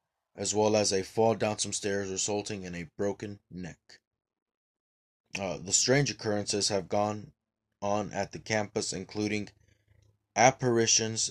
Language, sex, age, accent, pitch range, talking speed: English, male, 20-39, American, 90-110 Hz, 135 wpm